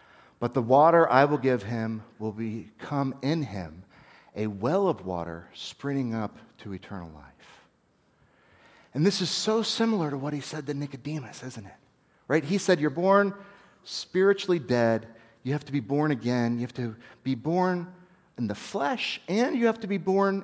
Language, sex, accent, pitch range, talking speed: English, male, American, 140-230 Hz, 175 wpm